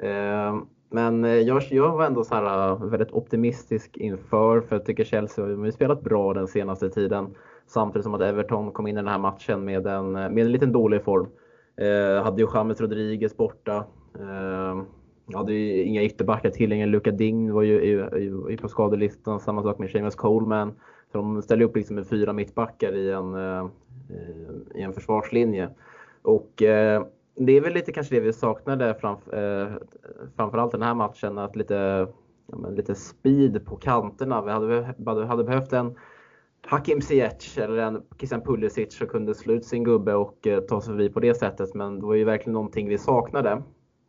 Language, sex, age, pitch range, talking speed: Swedish, male, 20-39, 100-115 Hz, 185 wpm